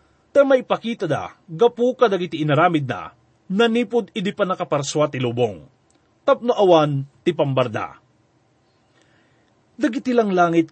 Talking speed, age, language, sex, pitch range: 120 wpm, 30-49, English, male, 150-230 Hz